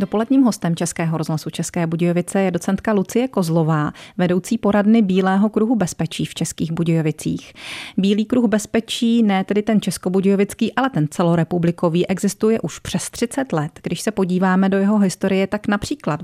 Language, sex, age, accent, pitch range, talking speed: Czech, female, 30-49, native, 170-215 Hz, 150 wpm